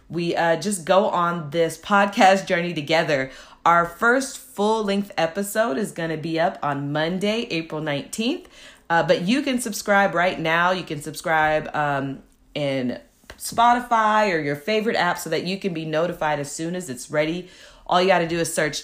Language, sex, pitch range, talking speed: English, female, 160-215 Hz, 180 wpm